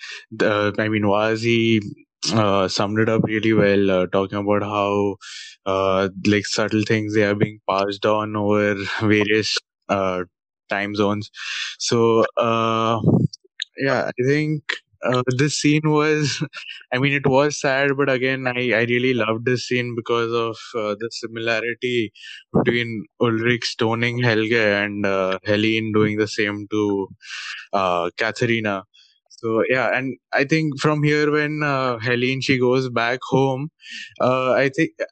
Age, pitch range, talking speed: 20-39, 110-140 Hz, 145 wpm